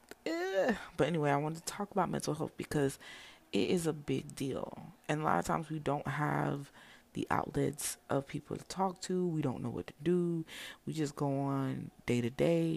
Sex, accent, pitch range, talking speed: female, American, 135-170 Hz, 200 wpm